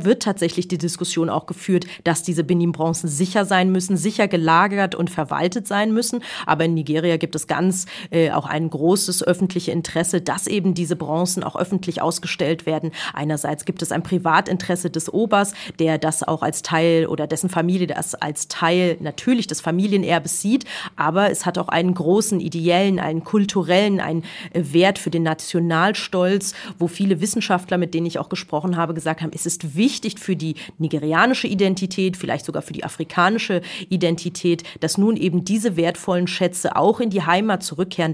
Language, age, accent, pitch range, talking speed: German, 30-49, German, 165-195 Hz, 170 wpm